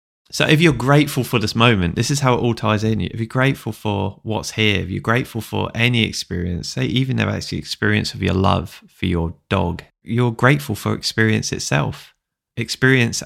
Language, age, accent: English, 20-39, British